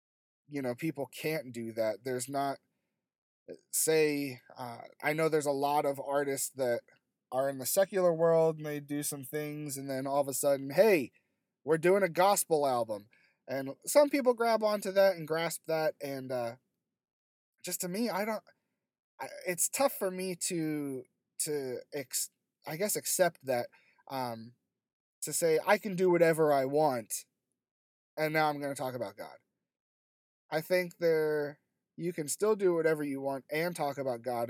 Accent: American